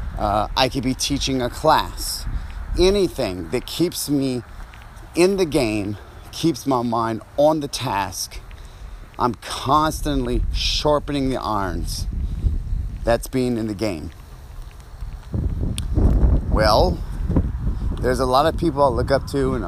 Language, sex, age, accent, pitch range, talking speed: English, male, 30-49, American, 90-130 Hz, 125 wpm